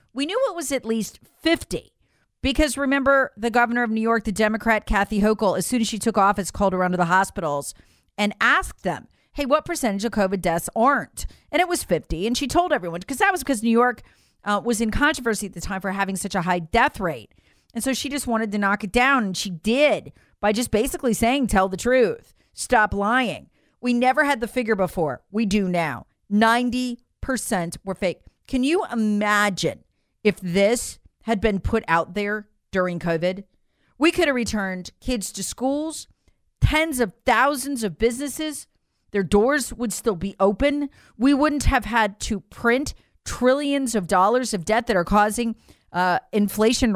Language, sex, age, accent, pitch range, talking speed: English, female, 40-59, American, 195-265 Hz, 185 wpm